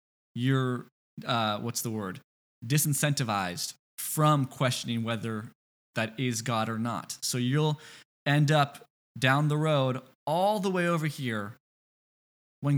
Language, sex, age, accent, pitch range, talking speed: English, male, 20-39, American, 115-145 Hz, 125 wpm